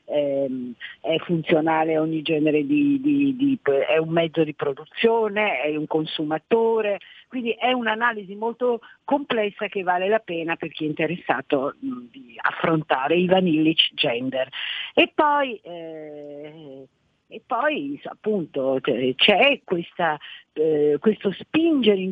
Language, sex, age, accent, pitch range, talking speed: Italian, female, 50-69, native, 155-230 Hz, 125 wpm